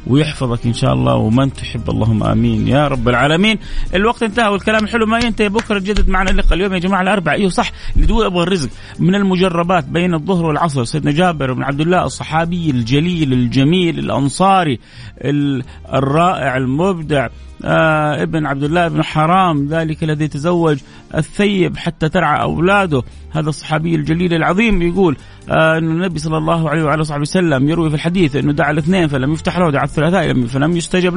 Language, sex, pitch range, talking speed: Arabic, male, 145-185 Hz, 165 wpm